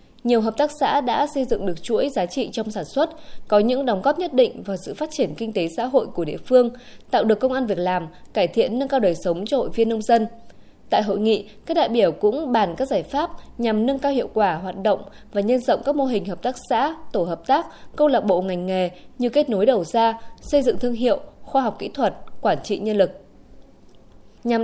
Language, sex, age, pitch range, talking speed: Vietnamese, female, 20-39, 200-265 Hz, 245 wpm